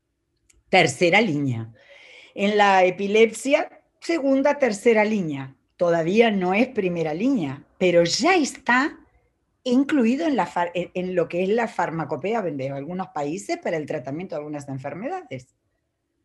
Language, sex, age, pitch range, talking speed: Spanish, female, 40-59, 155-230 Hz, 130 wpm